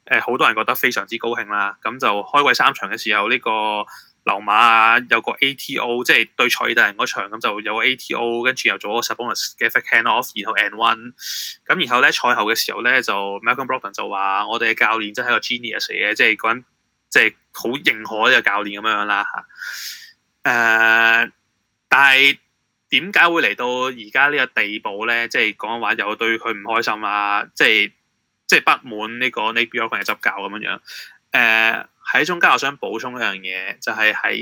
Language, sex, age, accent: Chinese, male, 20-39, native